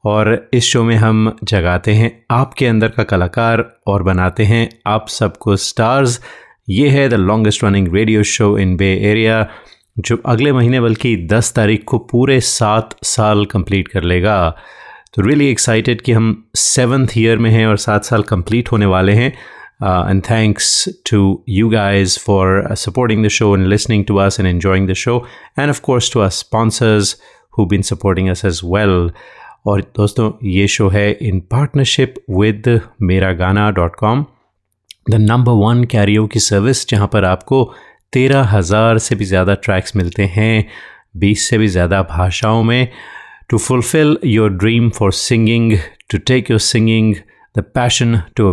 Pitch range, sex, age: 100-115 Hz, male, 30-49